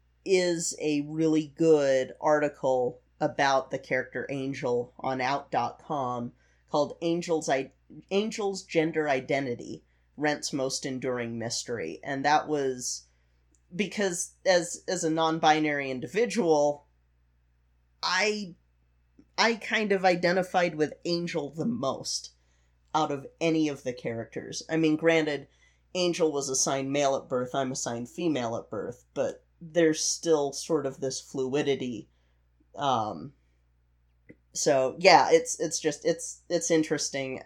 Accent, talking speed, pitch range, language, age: American, 120 wpm, 120-155 Hz, English, 30-49